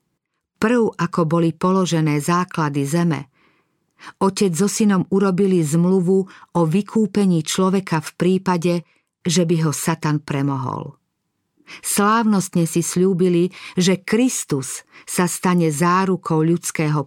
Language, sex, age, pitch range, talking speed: Slovak, female, 50-69, 160-190 Hz, 105 wpm